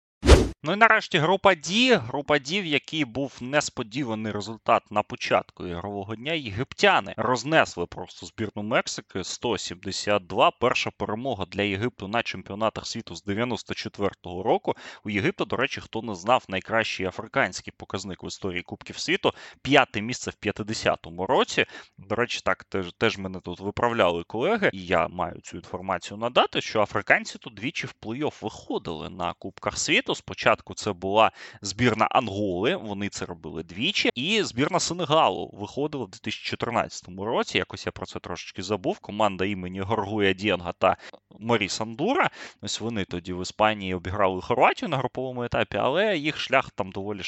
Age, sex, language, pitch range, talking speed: 20-39, male, Ukrainian, 95-125 Hz, 150 wpm